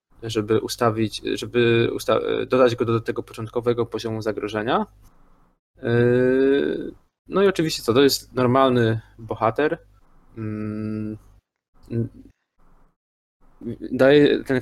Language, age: Polish, 20-39